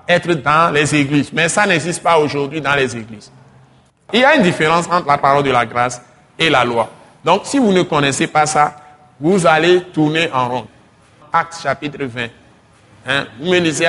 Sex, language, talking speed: male, French, 195 wpm